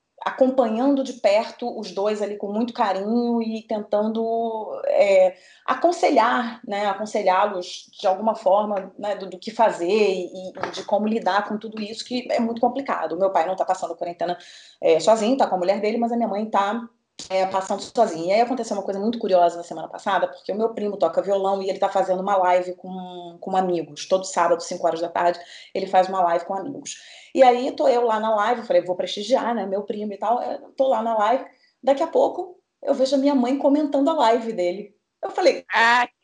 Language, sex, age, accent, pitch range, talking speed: Portuguese, female, 30-49, Brazilian, 200-315 Hz, 210 wpm